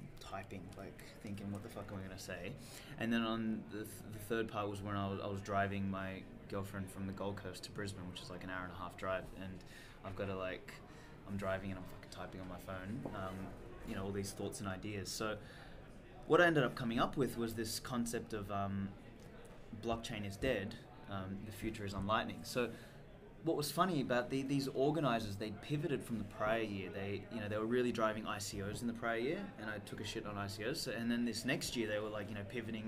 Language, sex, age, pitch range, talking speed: English, male, 20-39, 100-120 Hz, 235 wpm